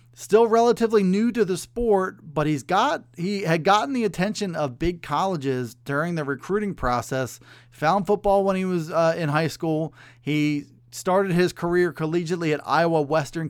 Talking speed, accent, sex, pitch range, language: 170 wpm, American, male, 130-175 Hz, English